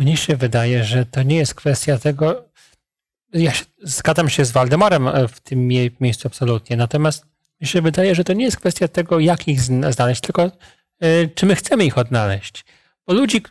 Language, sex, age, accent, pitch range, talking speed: Polish, male, 40-59, native, 135-170 Hz, 175 wpm